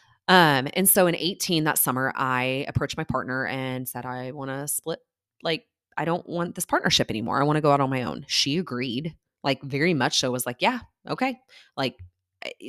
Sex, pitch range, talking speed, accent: female, 125-155 Hz, 210 wpm, American